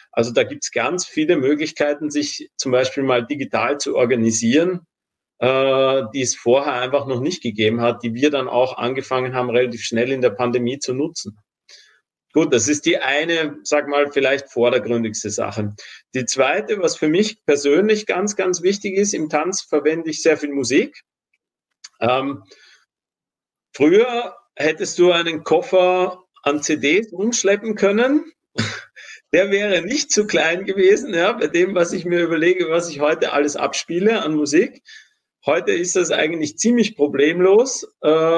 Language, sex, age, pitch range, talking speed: German, male, 40-59, 145-195 Hz, 155 wpm